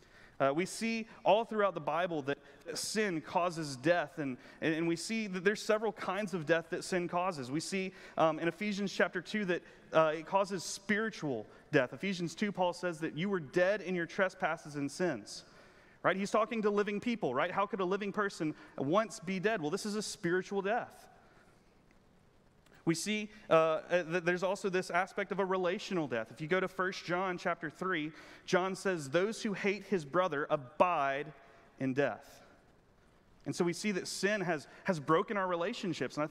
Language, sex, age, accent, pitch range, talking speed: English, male, 30-49, American, 160-200 Hz, 190 wpm